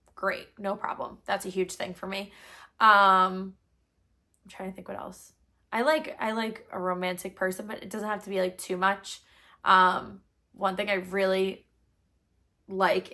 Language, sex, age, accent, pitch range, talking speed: English, female, 10-29, American, 185-205 Hz, 175 wpm